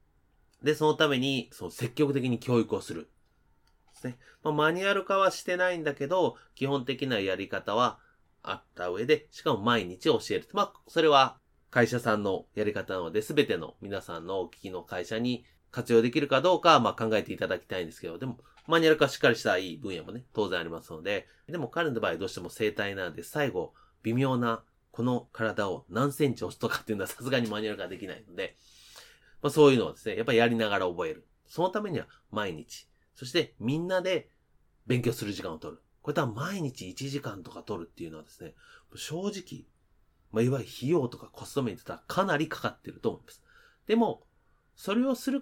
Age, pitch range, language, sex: 30-49, 105-155 Hz, Japanese, male